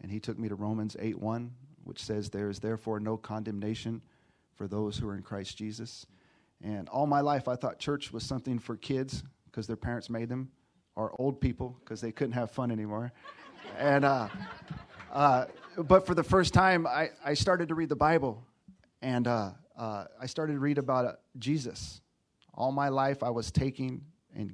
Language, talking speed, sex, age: English, 190 wpm, male, 40-59